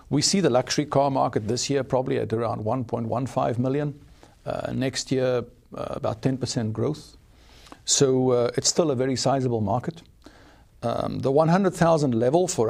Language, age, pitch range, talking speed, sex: English, 50-69, 115-145 Hz, 155 wpm, male